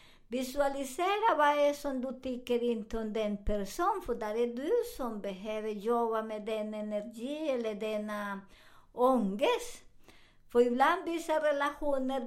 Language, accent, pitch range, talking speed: Swedish, American, 225-275 Hz, 140 wpm